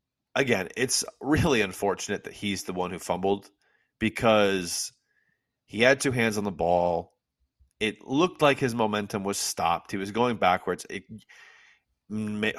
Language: English